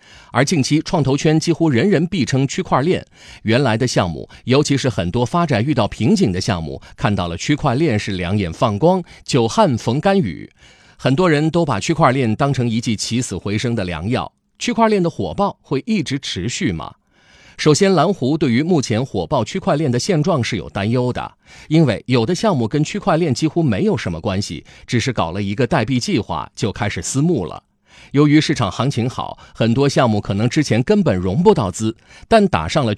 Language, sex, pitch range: Chinese, male, 110-165 Hz